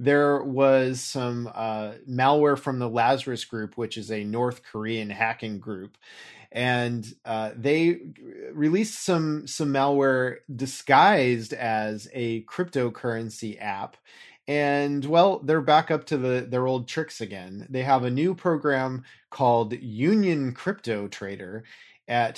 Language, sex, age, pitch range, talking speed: English, male, 30-49, 115-145 Hz, 130 wpm